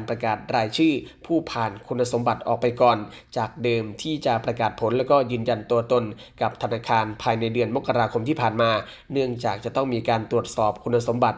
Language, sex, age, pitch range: Thai, male, 20-39, 115-130 Hz